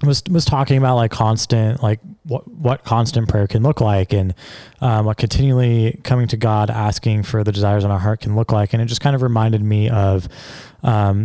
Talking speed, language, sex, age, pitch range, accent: 215 wpm, English, male, 20-39, 100-120 Hz, American